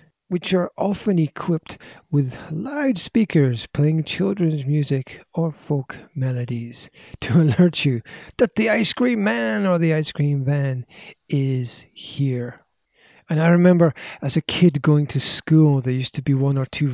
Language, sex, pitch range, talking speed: English, male, 130-160 Hz, 150 wpm